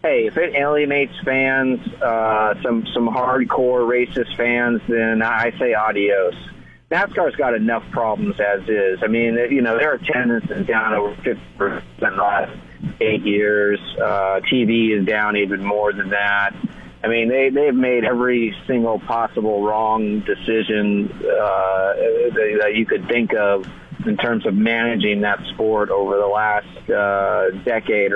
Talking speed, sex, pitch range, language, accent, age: 150 wpm, male, 105-120 Hz, English, American, 40-59